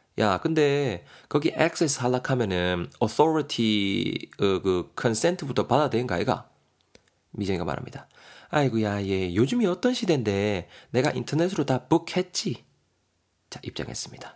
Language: Korean